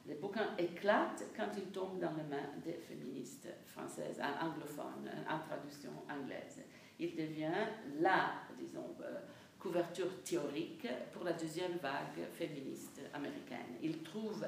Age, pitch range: 50-69, 170-210 Hz